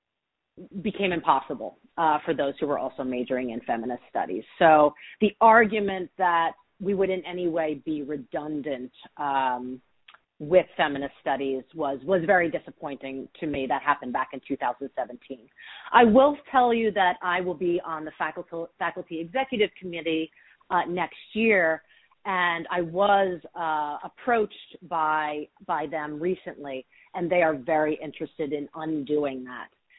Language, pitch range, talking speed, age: English, 140-180 Hz, 145 wpm, 30-49